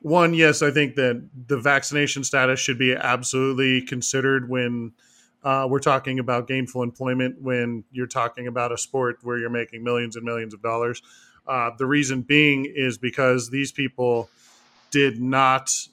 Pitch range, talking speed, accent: 125-155 Hz, 160 wpm, American